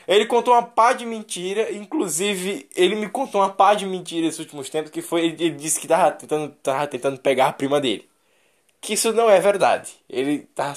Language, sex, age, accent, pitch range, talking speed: Portuguese, male, 10-29, Brazilian, 150-200 Hz, 205 wpm